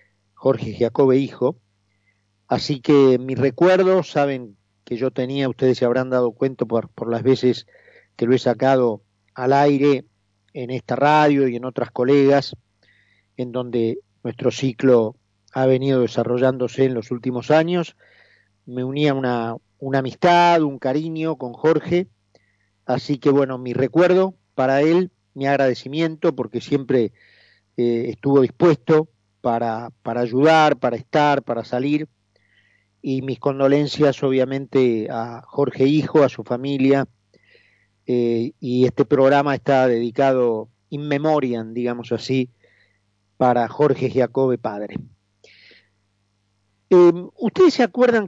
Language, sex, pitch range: Spanish, male, 115-145 Hz